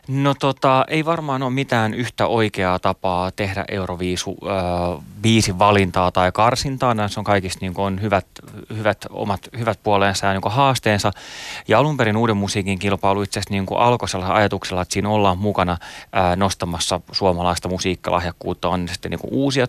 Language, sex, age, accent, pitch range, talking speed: Finnish, male, 30-49, native, 95-110 Hz, 150 wpm